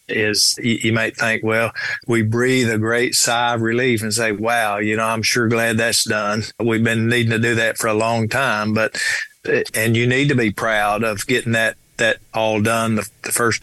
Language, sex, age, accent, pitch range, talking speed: English, male, 50-69, American, 110-120 Hz, 210 wpm